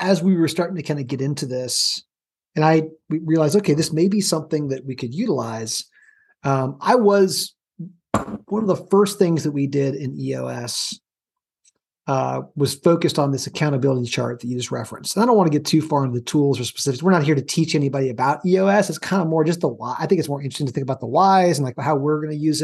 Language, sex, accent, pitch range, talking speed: English, male, American, 135-175 Hz, 240 wpm